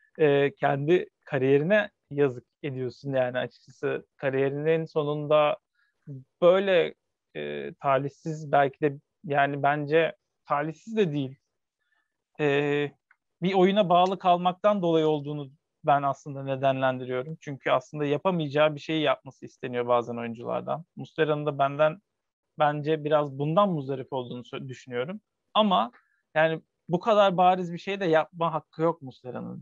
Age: 40-59